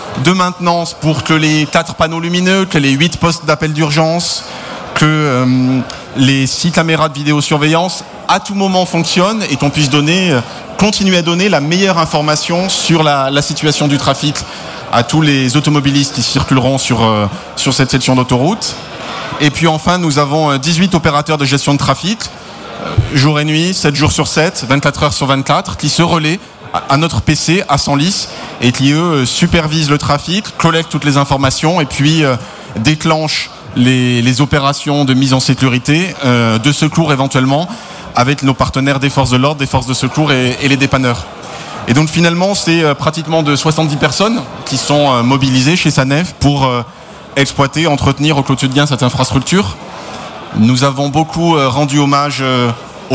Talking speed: 175 wpm